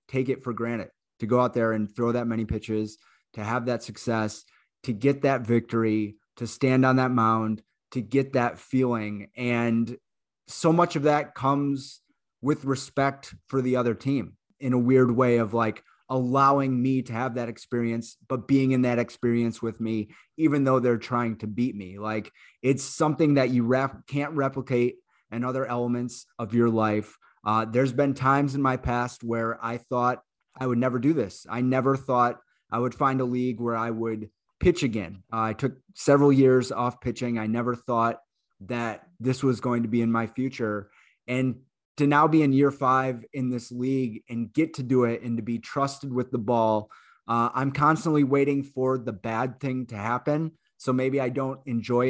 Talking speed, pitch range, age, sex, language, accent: 190 wpm, 115-135 Hz, 30-49, male, English, American